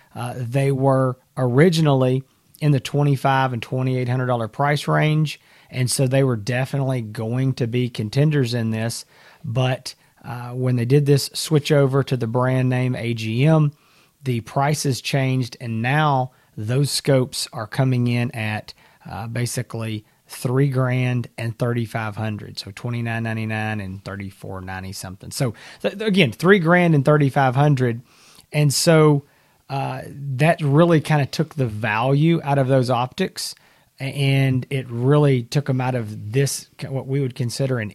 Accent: American